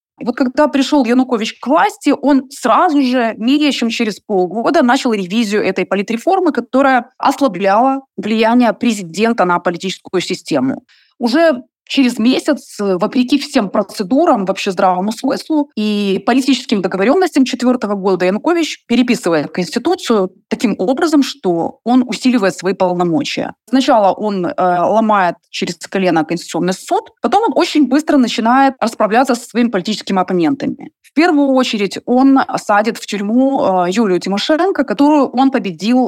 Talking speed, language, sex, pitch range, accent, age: 130 wpm, Russian, female, 200-270 Hz, native, 20-39